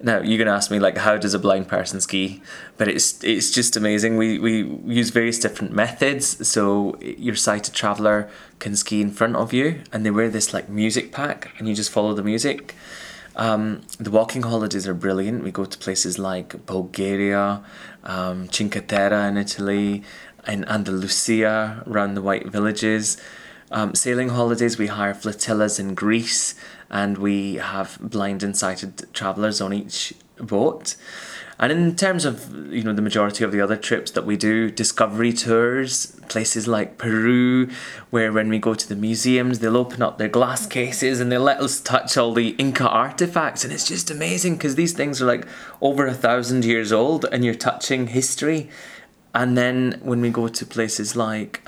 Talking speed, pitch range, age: 180 wpm, 100-120 Hz, 20-39